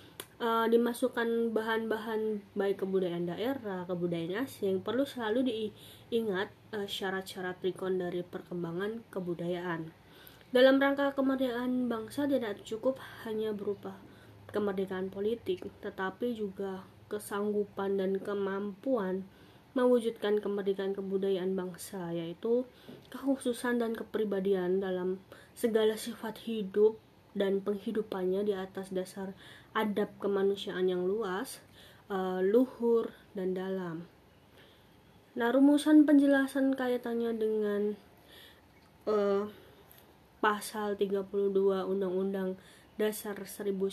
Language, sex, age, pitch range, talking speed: Indonesian, female, 20-39, 190-225 Hz, 90 wpm